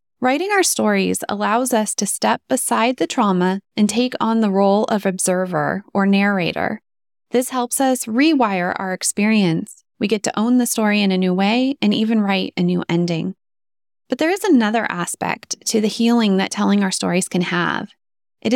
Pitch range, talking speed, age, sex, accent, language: 195-245 Hz, 180 wpm, 20-39, female, American, English